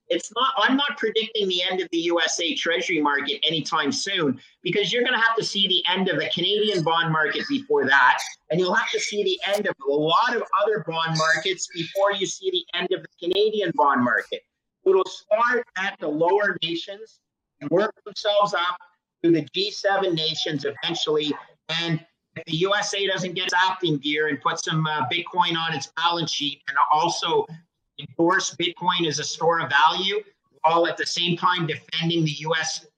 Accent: American